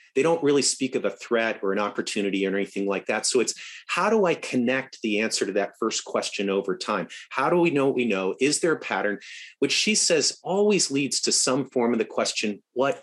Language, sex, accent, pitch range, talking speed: English, male, American, 110-155 Hz, 235 wpm